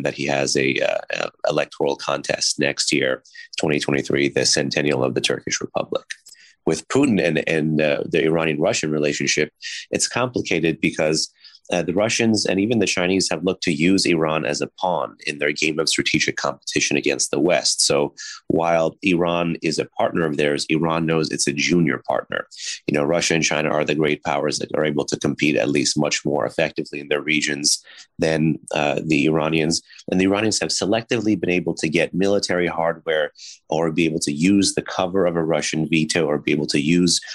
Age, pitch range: 30-49, 75-95 Hz